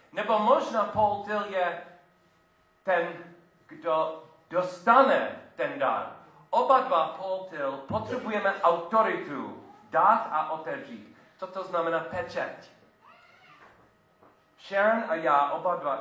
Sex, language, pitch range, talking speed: male, Czech, 135-185 Hz, 100 wpm